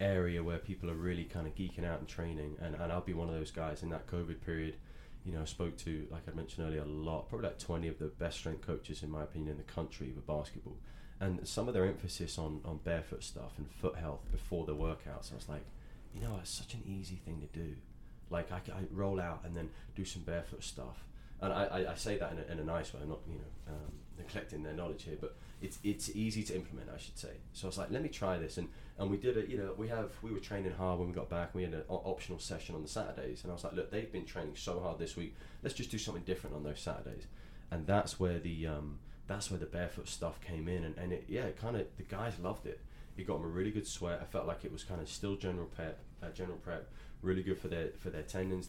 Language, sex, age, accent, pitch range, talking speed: English, male, 20-39, British, 80-95 Hz, 270 wpm